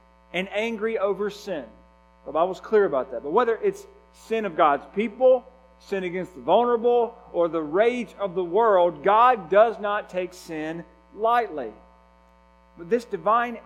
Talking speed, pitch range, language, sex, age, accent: 155 wpm, 130-200 Hz, English, male, 40-59, American